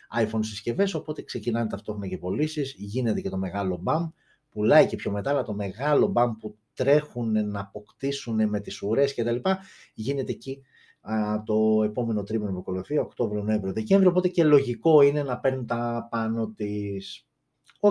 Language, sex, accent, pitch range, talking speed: Greek, male, native, 105-145 Hz, 170 wpm